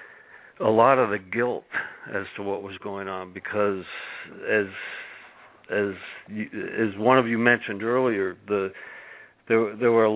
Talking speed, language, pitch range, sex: 155 wpm, English, 95-105 Hz, male